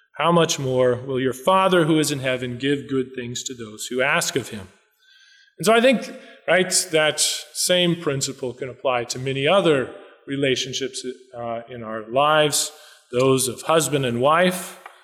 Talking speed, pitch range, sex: 170 wpm, 130-190 Hz, male